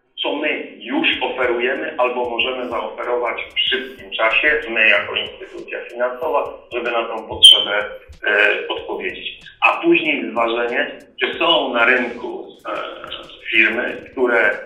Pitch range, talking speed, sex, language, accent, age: 110-150 Hz, 125 wpm, male, Polish, native, 40-59